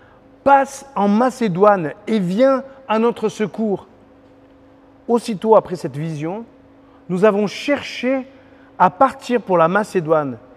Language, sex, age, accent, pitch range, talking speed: French, male, 40-59, French, 175-250 Hz, 115 wpm